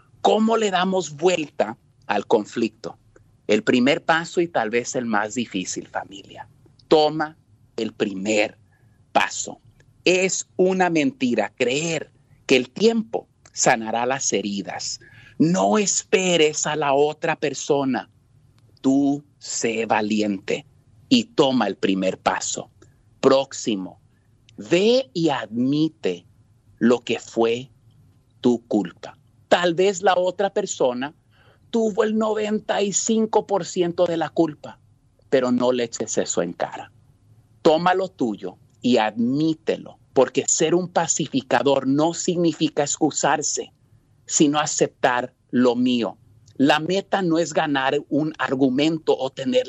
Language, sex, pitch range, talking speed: Spanish, male, 120-170 Hz, 115 wpm